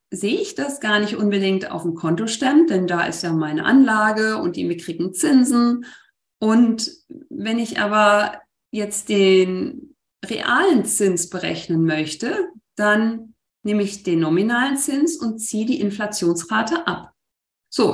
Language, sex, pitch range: German, female, 180-240 Hz